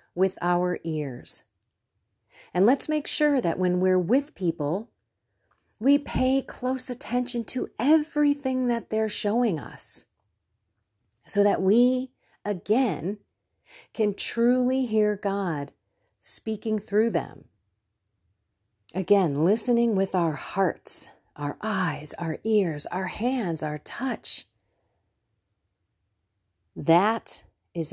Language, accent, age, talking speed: English, American, 40-59, 105 wpm